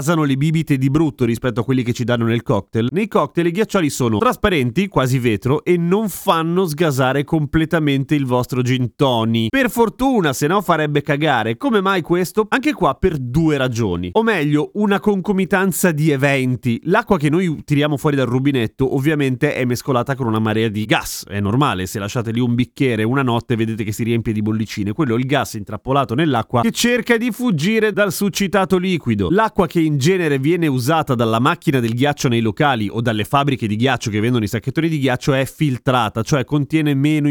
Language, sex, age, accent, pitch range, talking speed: Italian, male, 30-49, native, 120-175 Hz, 195 wpm